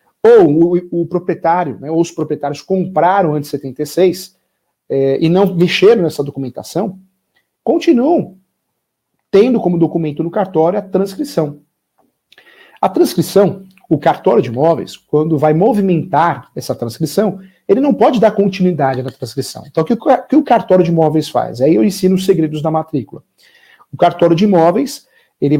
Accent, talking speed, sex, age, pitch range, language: Brazilian, 150 wpm, male, 50-69, 155-200 Hz, Portuguese